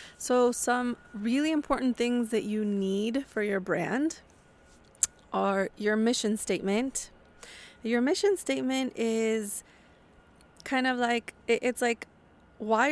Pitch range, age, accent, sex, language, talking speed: 205-255 Hz, 20-39, American, female, English, 115 wpm